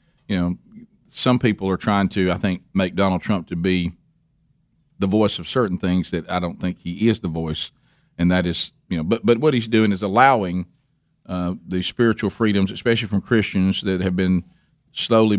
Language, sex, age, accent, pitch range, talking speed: English, male, 40-59, American, 95-115 Hz, 195 wpm